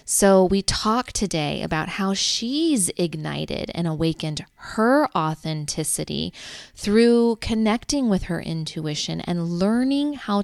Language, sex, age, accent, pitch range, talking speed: English, female, 20-39, American, 165-210 Hz, 115 wpm